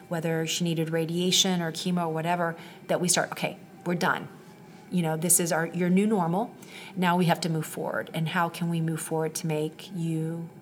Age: 40-59